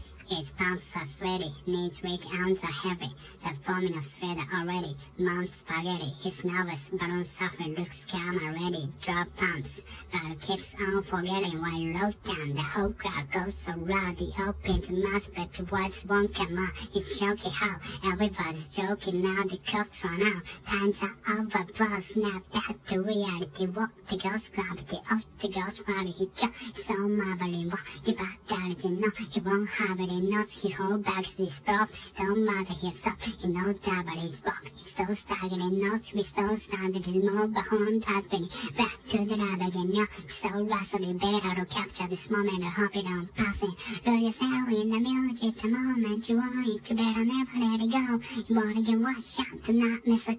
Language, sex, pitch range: Japanese, male, 185-225 Hz